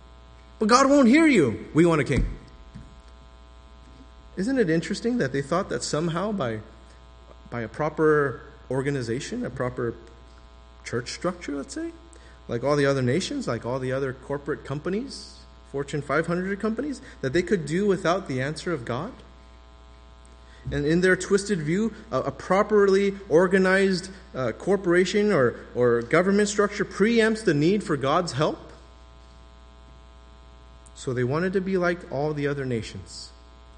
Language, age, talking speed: English, 30-49, 140 wpm